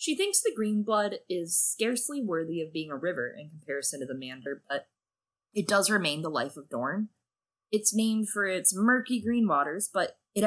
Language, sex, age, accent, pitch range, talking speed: English, female, 20-39, American, 160-240 Hz, 195 wpm